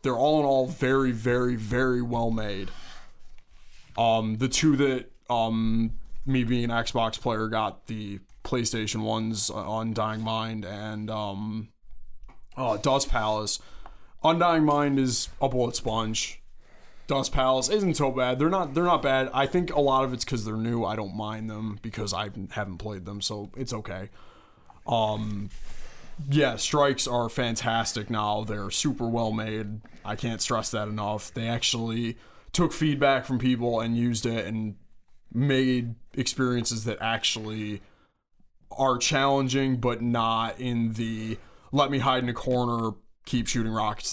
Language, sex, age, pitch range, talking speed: English, male, 20-39, 110-130 Hz, 150 wpm